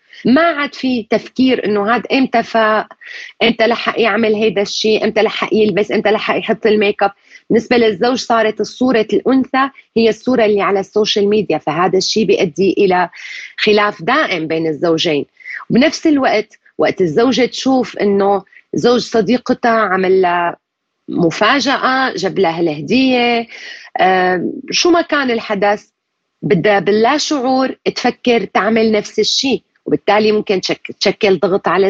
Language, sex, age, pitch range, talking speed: Arabic, female, 30-49, 195-245 Hz, 130 wpm